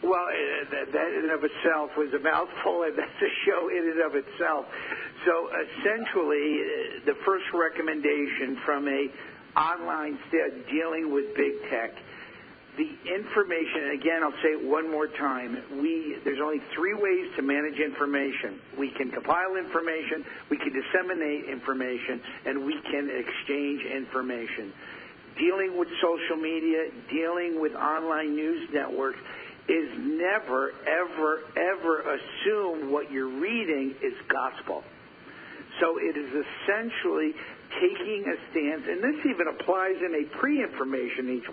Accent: American